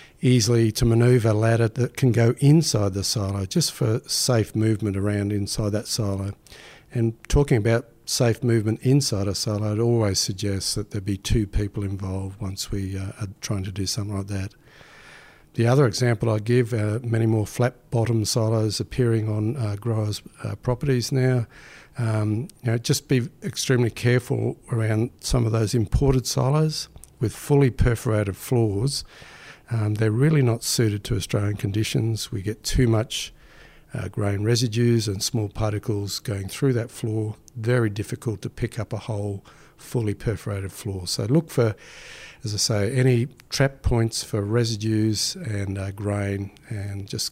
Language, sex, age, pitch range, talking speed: English, male, 60-79, 105-125 Hz, 165 wpm